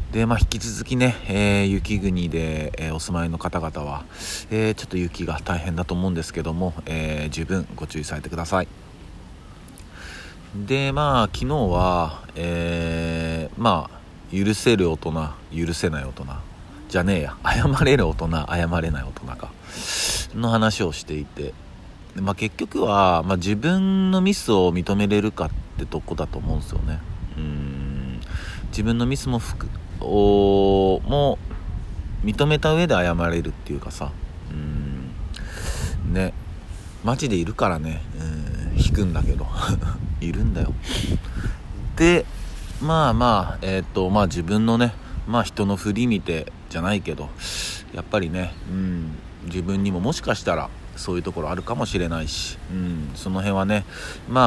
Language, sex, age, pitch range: Japanese, male, 40-59, 80-100 Hz